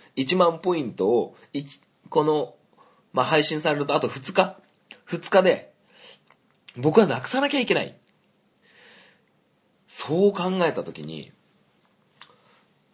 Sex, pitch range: male, 135-210 Hz